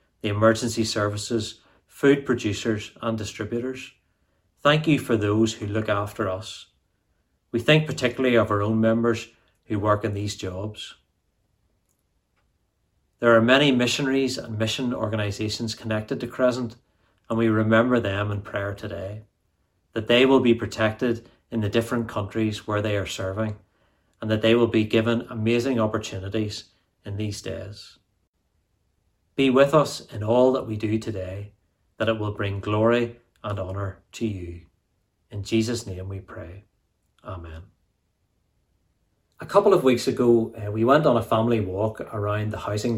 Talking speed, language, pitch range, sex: 150 wpm, English, 100-120 Hz, male